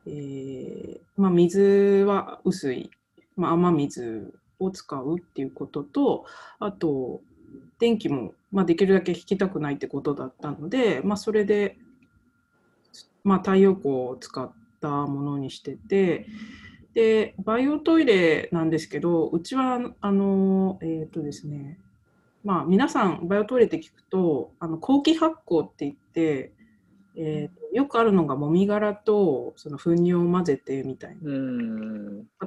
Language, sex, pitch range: Japanese, female, 155-215 Hz